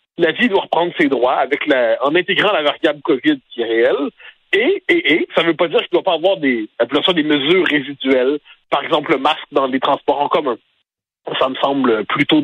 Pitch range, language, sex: 150-210 Hz, French, male